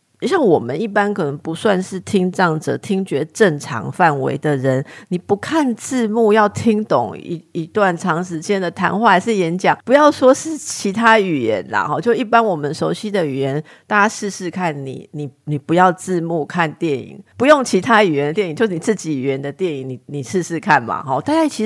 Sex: female